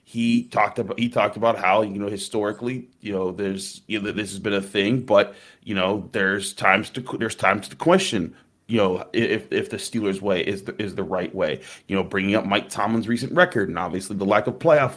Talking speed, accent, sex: 230 wpm, American, male